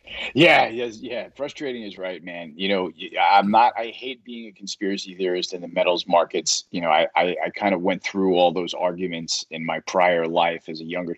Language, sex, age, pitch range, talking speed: English, male, 30-49, 90-110 Hz, 215 wpm